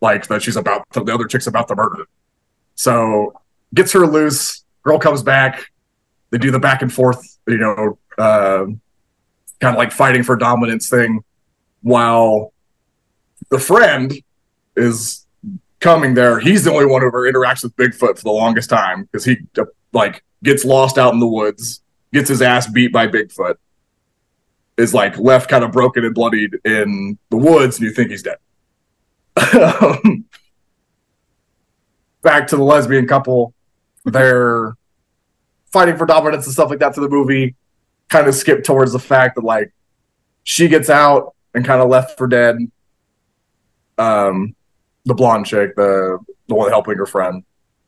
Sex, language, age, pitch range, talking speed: male, English, 30-49, 115-140 Hz, 160 wpm